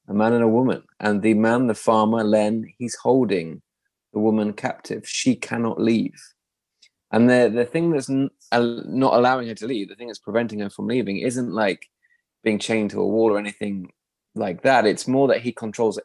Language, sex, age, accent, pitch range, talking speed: English, male, 20-39, British, 105-125 Hz, 195 wpm